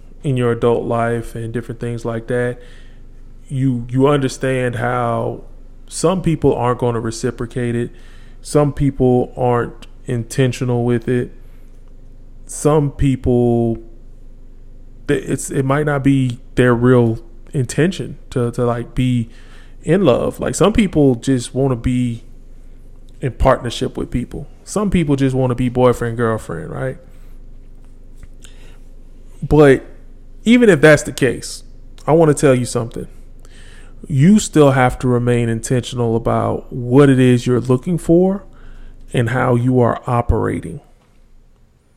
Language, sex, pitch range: English, male, 120-135 Hz